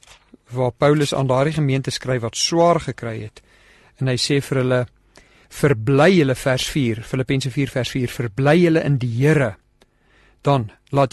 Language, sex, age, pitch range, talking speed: English, male, 50-69, 125-155 Hz, 150 wpm